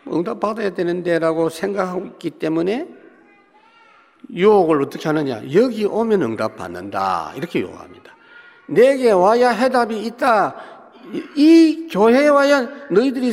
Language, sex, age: Korean, male, 50-69